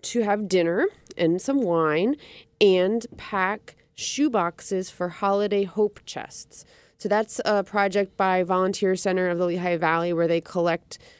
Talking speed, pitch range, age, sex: 145 wpm, 180-210 Hz, 30-49, female